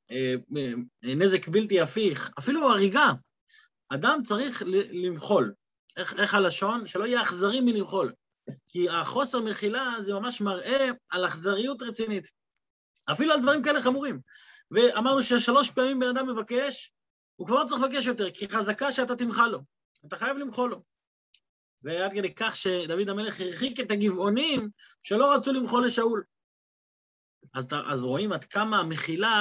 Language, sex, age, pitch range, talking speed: Hebrew, male, 30-49, 180-245 Hz, 140 wpm